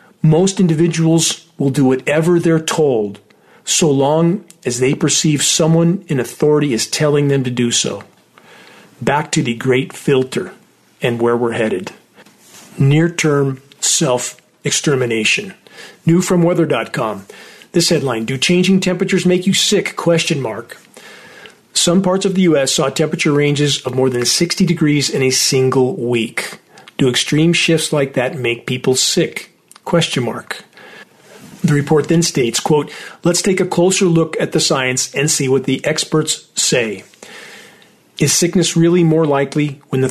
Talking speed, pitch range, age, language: 145 wpm, 130-170 Hz, 40-59, English